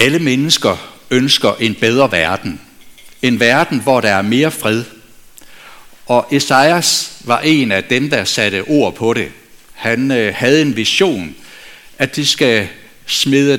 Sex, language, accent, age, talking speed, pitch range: male, Danish, native, 60-79, 145 wpm, 105-145 Hz